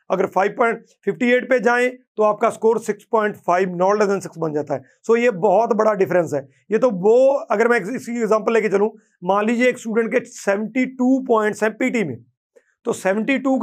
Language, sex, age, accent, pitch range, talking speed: Hindi, male, 40-59, native, 205-250 Hz, 190 wpm